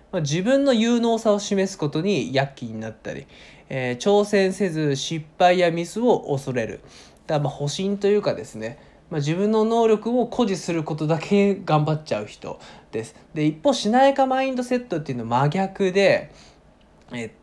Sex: male